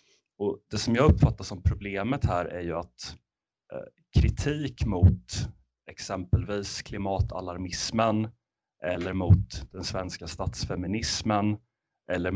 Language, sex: Swedish, male